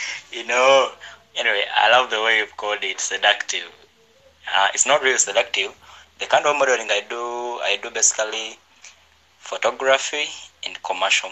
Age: 20-39